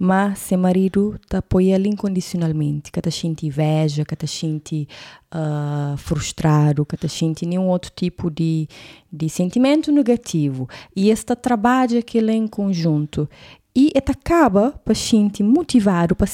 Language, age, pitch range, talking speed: Portuguese, 20-39, 165-235 Hz, 125 wpm